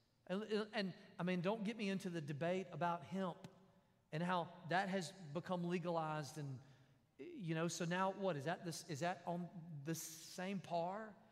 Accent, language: American, English